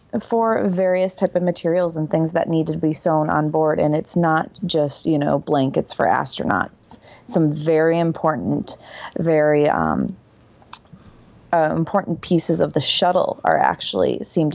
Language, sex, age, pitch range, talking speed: English, female, 30-49, 150-185 Hz, 155 wpm